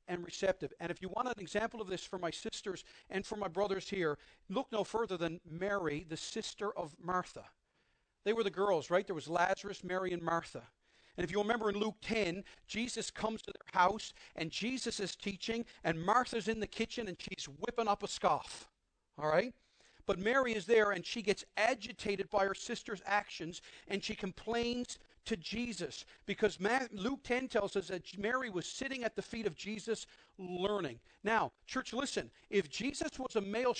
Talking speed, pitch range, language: 190 wpm, 185-230 Hz, English